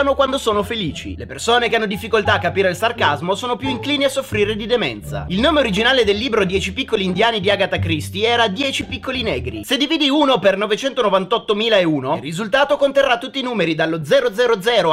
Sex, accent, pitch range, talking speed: male, native, 190-265 Hz, 185 wpm